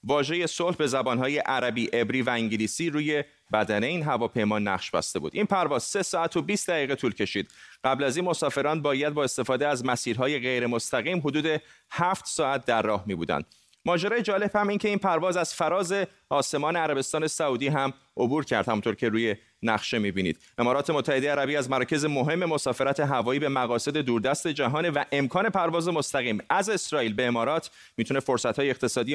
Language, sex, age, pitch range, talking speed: Persian, male, 30-49, 125-160 Hz, 170 wpm